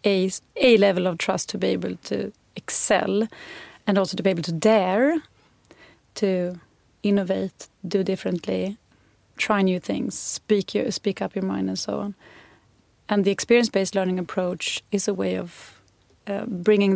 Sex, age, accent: female, 30-49, Swedish